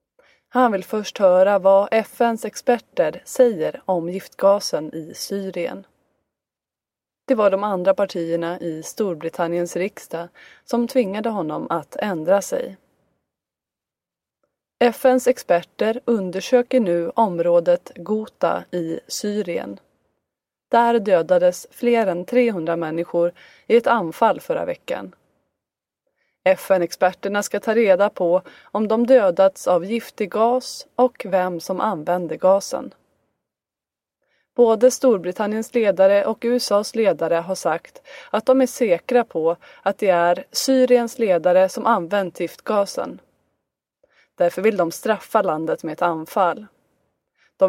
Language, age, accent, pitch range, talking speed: Swedish, 20-39, native, 175-235 Hz, 115 wpm